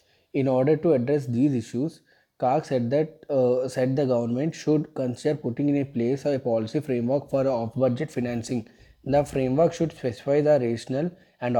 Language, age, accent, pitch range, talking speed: English, 20-39, Indian, 120-140 Hz, 160 wpm